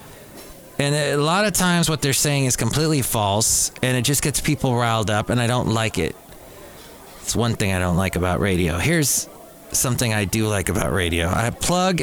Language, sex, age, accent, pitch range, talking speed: English, male, 30-49, American, 115-160 Hz, 205 wpm